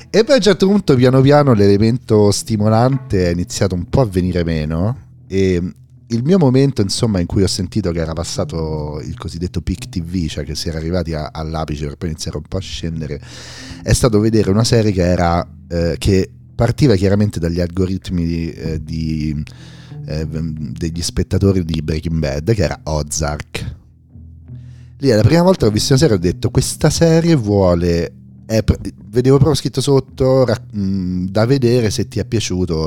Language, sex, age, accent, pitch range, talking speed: Italian, male, 40-59, native, 80-120 Hz, 180 wpm